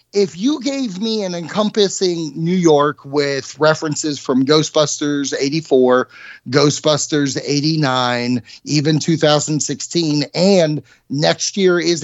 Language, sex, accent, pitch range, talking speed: English, male, American, 140-200 Hz, 105 wpm